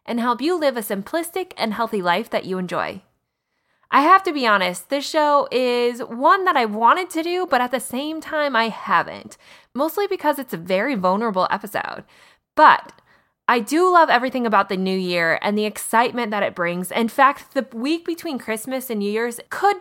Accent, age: American, 20-39